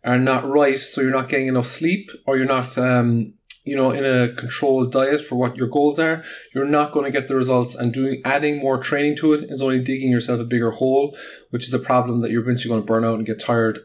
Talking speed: 255 wpm